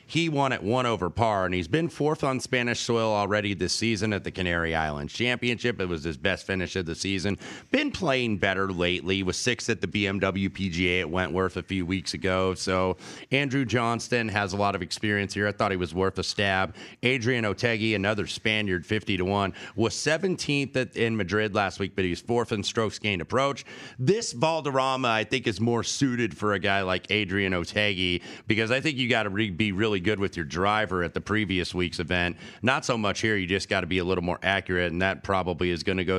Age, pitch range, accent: 30-49, 95-120 Hz, American